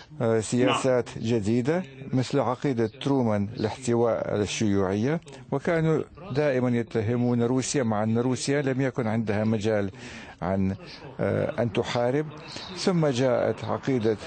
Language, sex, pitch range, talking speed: Arabic, male, 105-140 Hz, 100 wpm